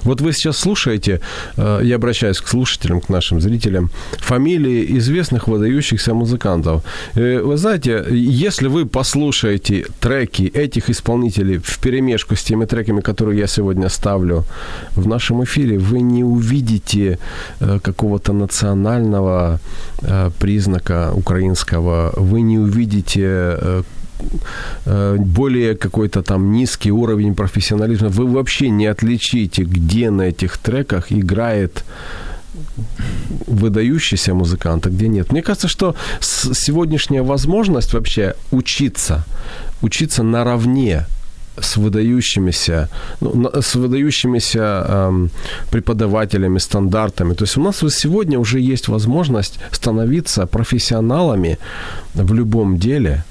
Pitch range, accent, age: 95-125 Hz, native, 40-59